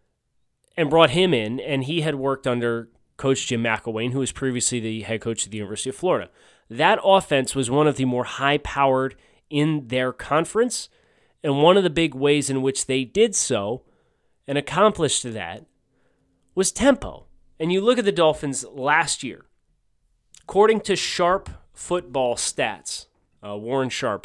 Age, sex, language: 30-49, male, English